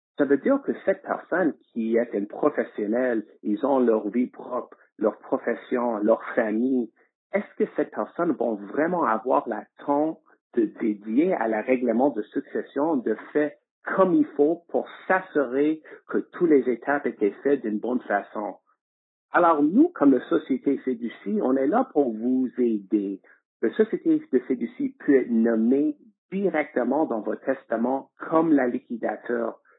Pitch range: 115-155 Hz